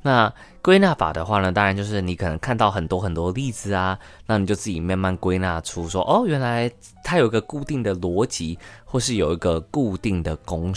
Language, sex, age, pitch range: Chinese, male, 20-39, 85-105 Hz